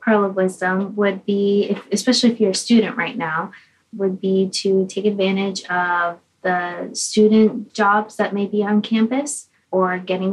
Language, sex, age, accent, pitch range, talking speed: English, female, 20-39, American, 185-215 Hz, 165 wpm